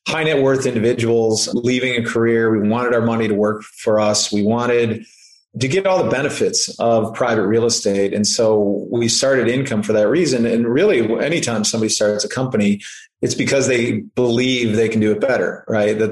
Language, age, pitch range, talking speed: English, 30-49, 110-125 Hz, 195 wpm